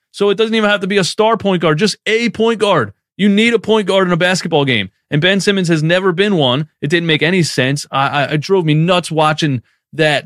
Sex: male